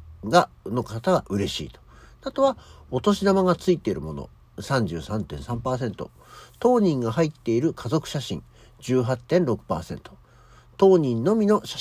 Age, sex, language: 50-69, male, Japanese